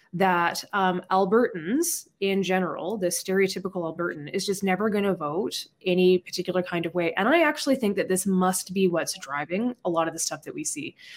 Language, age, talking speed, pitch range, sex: English, 20-39, 200 wpm, 175-210 Hz, female